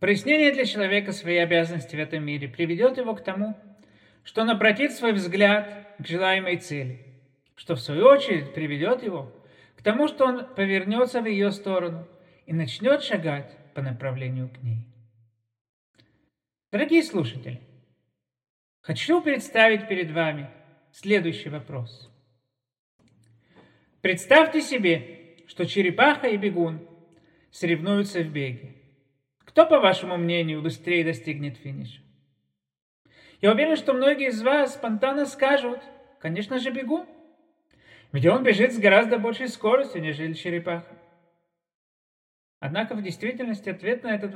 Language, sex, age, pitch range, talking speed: Russian, male, 50-69, 140-215 Hz, 125 wpm